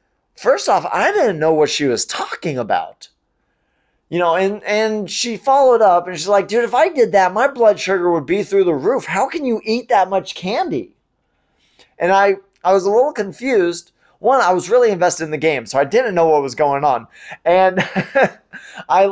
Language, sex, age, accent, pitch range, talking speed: English, male, 20-39, American, 155-210 Hz, 205 wpm